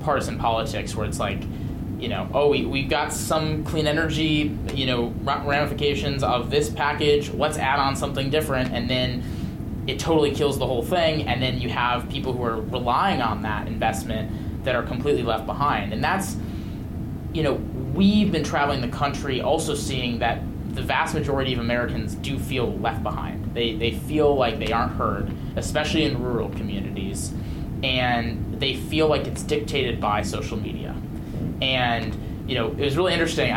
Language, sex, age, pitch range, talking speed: English, male, 20-39, 110-140 Hz, 175 wpm